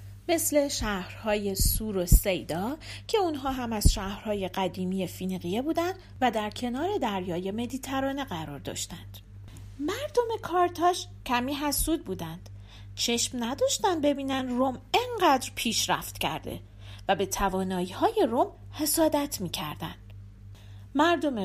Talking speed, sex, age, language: 110 wpm, female, 40-59, Persian